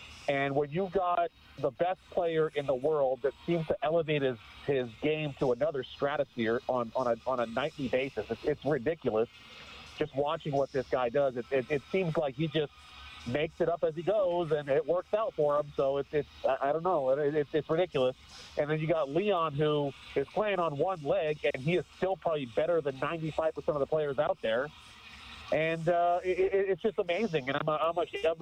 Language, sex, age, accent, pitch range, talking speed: English, male, 40-59, American, 145-170 Hz, 210 wpm